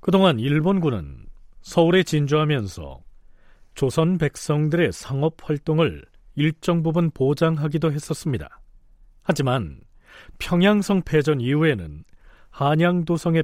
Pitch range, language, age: 105-155 Hz, Korean, 40-59